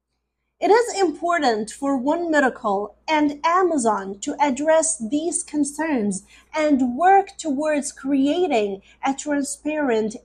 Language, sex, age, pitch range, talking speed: English, female, 30-49, 220-330 Hz, 105 wpm